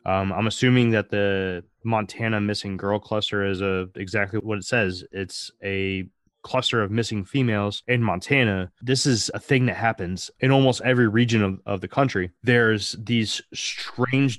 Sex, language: male, English